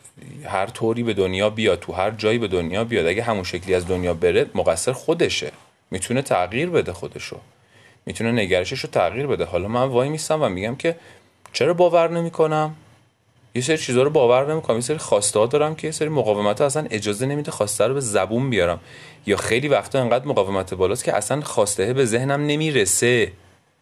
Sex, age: male, 30-49